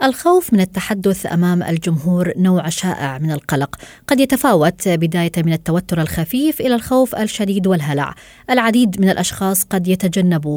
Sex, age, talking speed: female, 20-39, 135 wpm